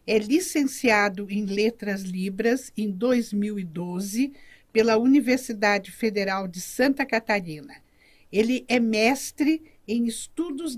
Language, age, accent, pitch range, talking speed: Portuguese, 50-69, Brazilian, 200-260 Hz, 100 wpm